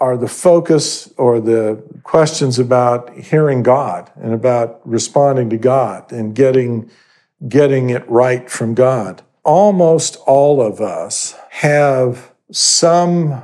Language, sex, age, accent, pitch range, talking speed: English, male, 50-69, American, 115-140 Hz, 120 wpm